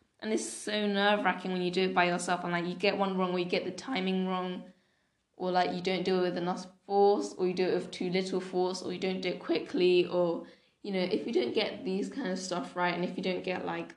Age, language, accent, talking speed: 10-29, English, British, 270 wpm